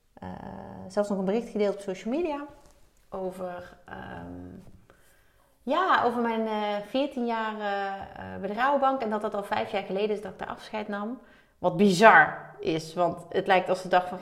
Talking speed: 175 wpm